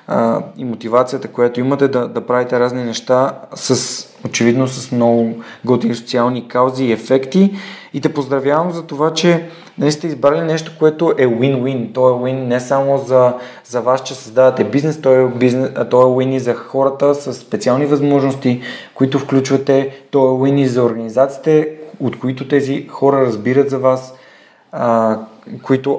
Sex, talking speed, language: male, 160 wpm, Bulgarian